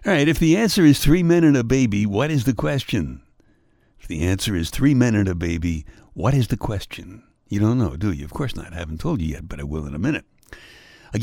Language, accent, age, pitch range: English, American, 60-79, 90-135 Hz